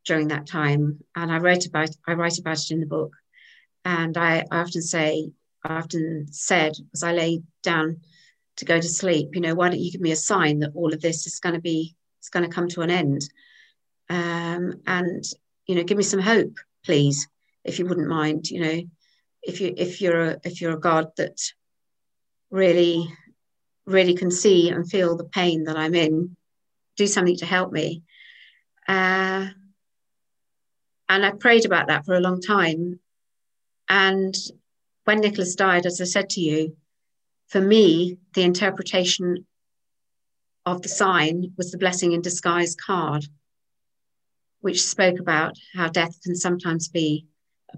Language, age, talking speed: English, 50-69, 170 wpm